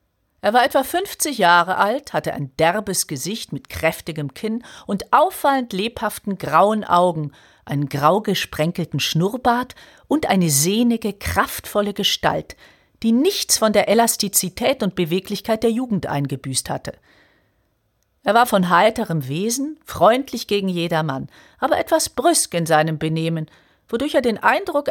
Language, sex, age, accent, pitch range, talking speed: German, female, 50-69, German, 160-230 Hz, 135 wpm